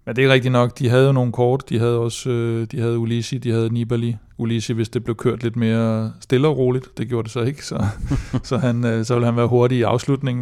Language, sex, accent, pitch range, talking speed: Danish, male, native, 115-125 Hz, 265 wpm